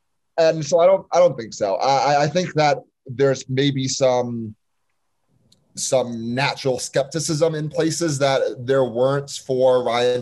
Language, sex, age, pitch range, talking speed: English, male, 30-49, 115-145 Hz, 145 wpm